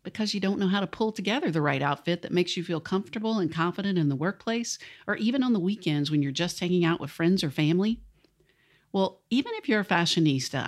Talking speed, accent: 230 wpm, American